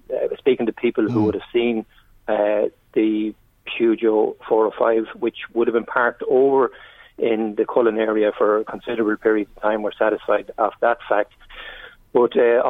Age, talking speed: 30-49, 165 wpm